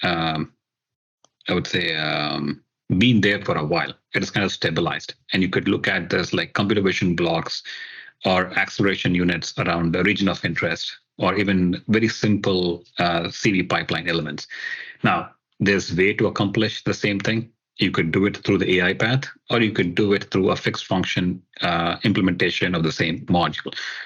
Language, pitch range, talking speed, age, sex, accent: English, 90-110 Hz, 175 wpm, 40-59, male, Indian